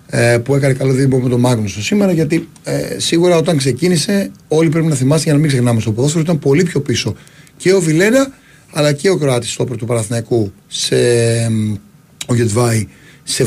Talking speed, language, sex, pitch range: 180 wpm, Greek, male, 125-175 Hz